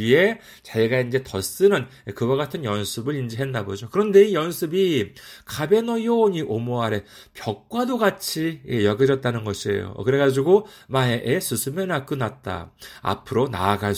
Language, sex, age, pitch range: Korean, male, 40-59, 115-180 Hz